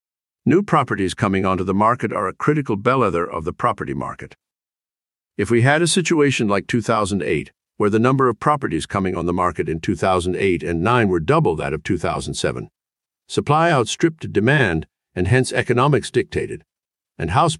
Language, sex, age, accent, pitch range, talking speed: English, male, 50-69, American, 95-140 Hz, 165 wpm